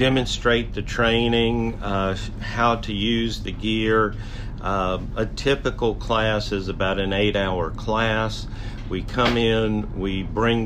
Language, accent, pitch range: English, American, 100-115 Hz